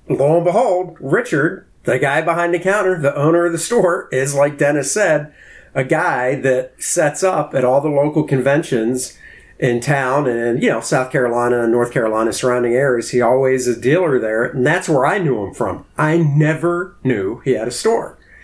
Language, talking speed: English, 190 wpm